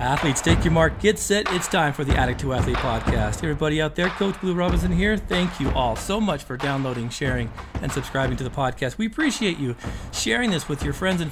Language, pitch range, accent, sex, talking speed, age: English, 135-165 Hz, American, male, 230 wpm, 40-59